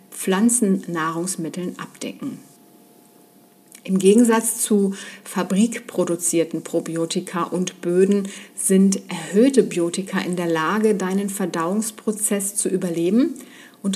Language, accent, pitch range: German, German, 180-230 Hz